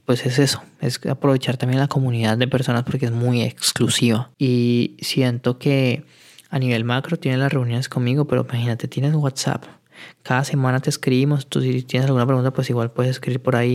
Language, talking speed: Spanish, 190 wpm